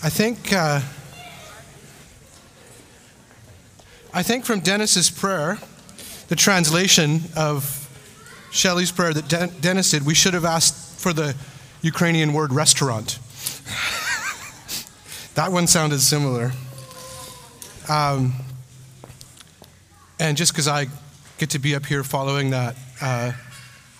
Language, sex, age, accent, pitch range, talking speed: English, male, 30-49, American, 130-155 Hz, 110 wpm